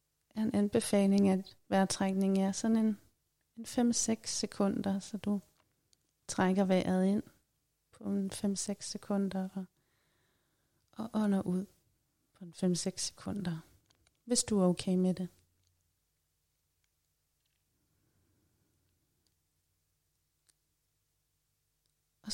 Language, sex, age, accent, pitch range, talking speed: Danish, female, 30-49, native, 170-215 Hz, 90 wpm